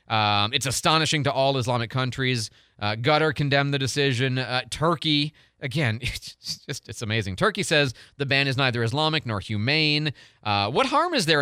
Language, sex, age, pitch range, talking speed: English, male, 30-49, 110-165 Hz, 175 wpm